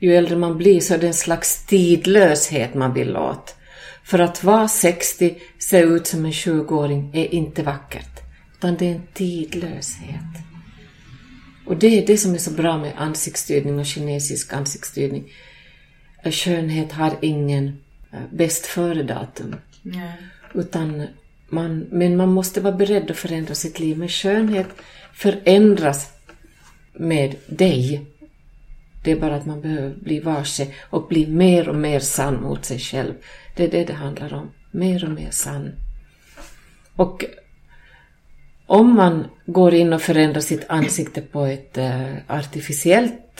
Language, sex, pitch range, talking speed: English, female, 145-180 Hz, 140 wpm